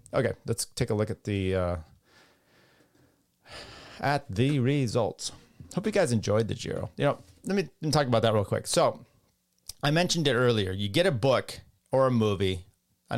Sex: male